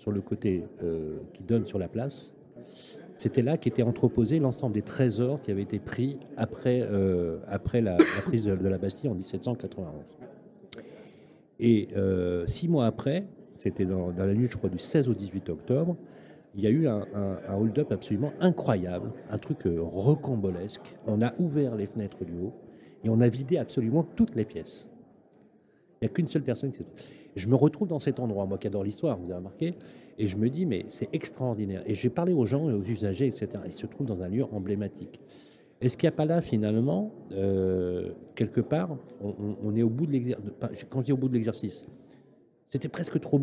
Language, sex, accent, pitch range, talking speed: French, male, French, 100-135 Hz, 205 wpm